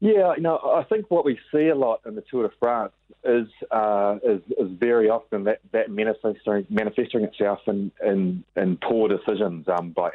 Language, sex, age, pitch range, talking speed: English, male, 30-49, 90-105 Hz, 190 wpm